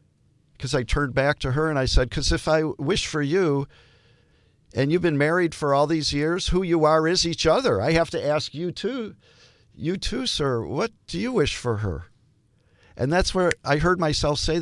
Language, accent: English, American